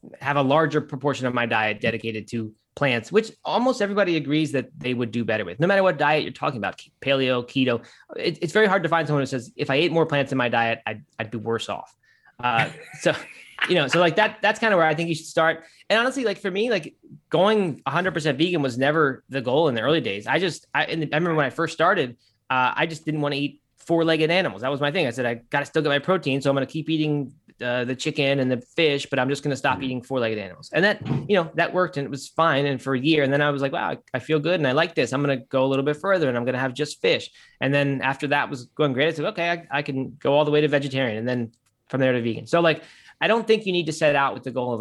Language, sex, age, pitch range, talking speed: English, male, 20-39, 125-160 Hz, 290 wpm